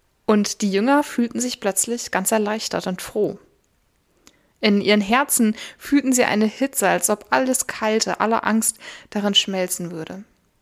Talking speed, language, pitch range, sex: 145 wpm, German, 200-240 Hz, female